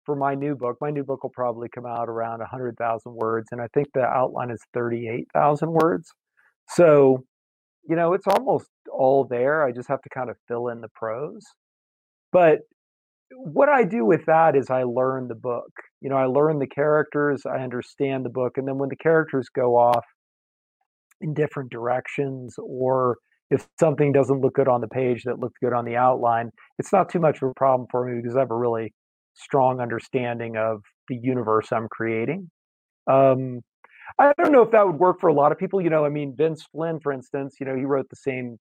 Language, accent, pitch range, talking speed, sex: English, American, 120-140 Hz, 210 wpm, male